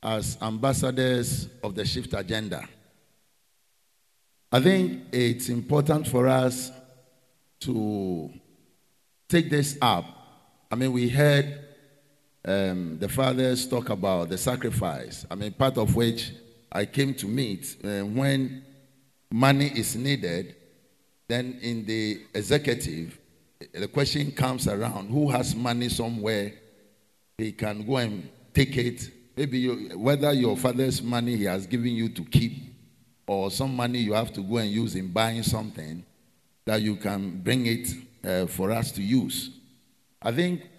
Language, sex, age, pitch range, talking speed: English, male, 50-69, 105-130 Hz, 140 wpm